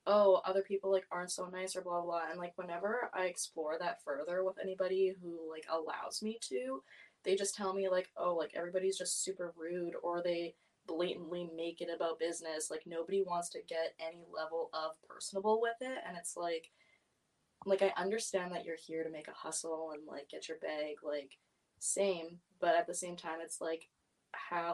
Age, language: 20-39, English